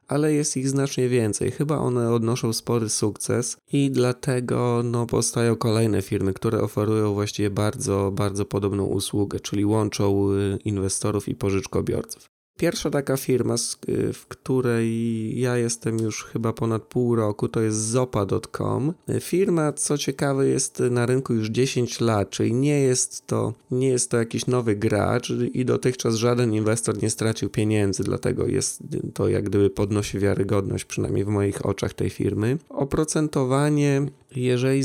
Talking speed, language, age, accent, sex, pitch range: 145 wpm, Polish, 20-39, native, male, 105-125 Hz